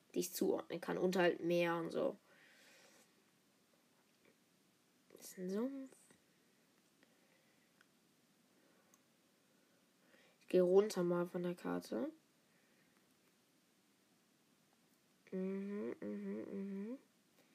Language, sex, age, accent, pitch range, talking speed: German, female, 20-39, German, 185-270 Hz, 60 wpm